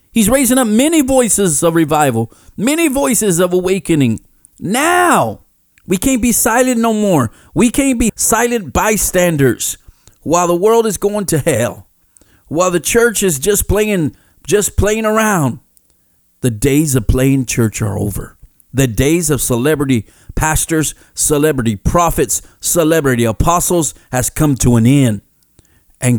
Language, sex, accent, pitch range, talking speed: English, male, American, 115-185 Hz, 140 wpm